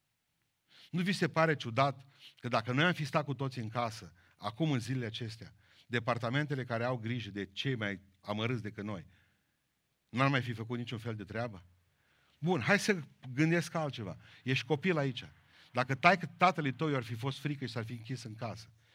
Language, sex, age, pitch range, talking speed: Romanian, male, 40-59, 115-140 Hz, 185 wpm